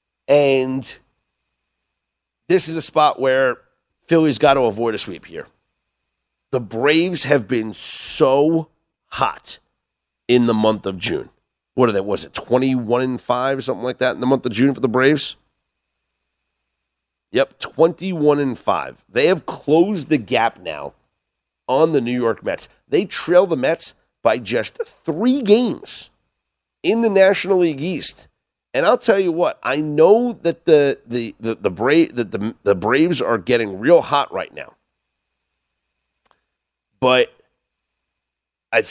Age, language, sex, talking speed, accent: 40-59, English, male, 150 wpm, American